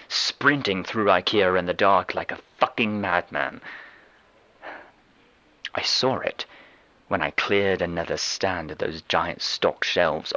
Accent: British